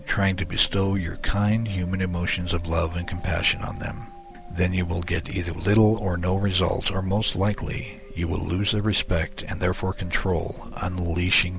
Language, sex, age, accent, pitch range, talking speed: English, male, 60-79, American, 85-105 Hz, 175 wpm